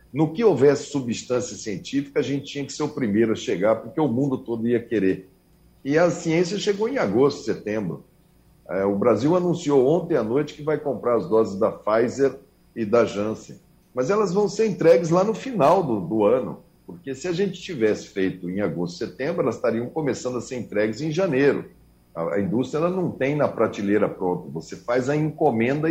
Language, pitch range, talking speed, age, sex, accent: Portuguese, 110-155 Hz, 195 wpm, 60-79, male, Brazilian